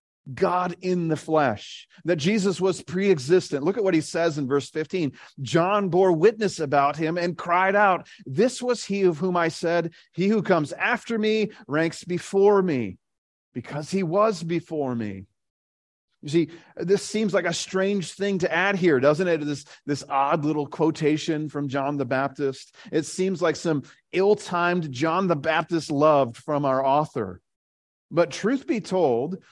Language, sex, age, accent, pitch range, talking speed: English, male, 40-59, American, 130-175 Hz, 165 wpm